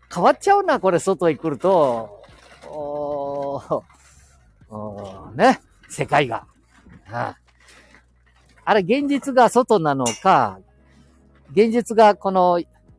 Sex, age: male, 50-69